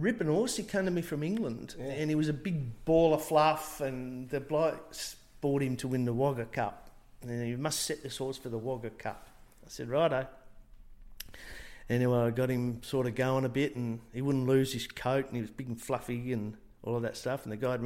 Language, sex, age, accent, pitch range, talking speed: English, male, 50-69, Australian, 120-155 Hz, 230 wpm